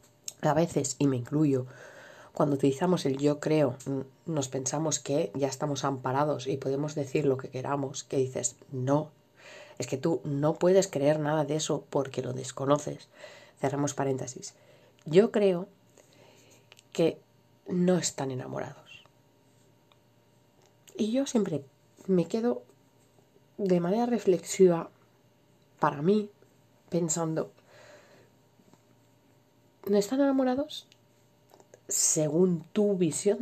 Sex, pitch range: female, 135-185 Hz